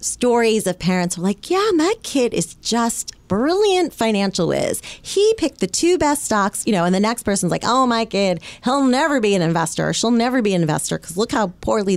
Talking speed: 215 wpm